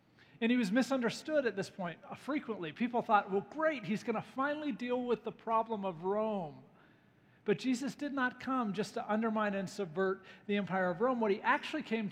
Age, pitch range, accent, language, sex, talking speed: 40-59, 190-235 Hz, American, English, male, 200 wpm